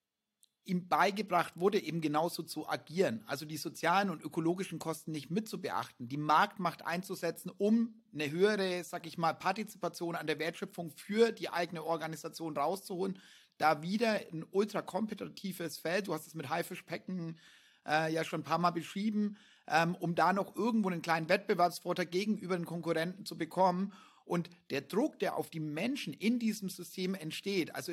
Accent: German